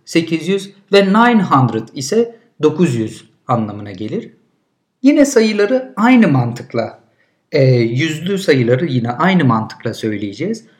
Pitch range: 125-205 Hz